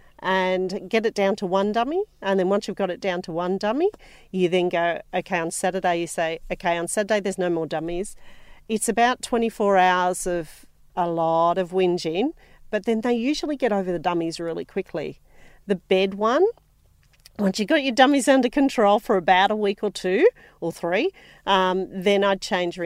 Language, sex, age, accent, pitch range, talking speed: English, female, 40-59, Australian, 170-210 Hz, 195 wpm